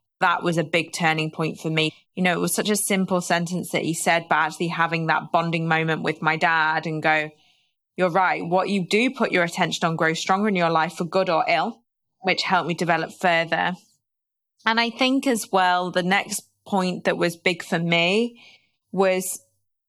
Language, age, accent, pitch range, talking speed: English, 20-39, British, 165-190 Hz, 200 wpm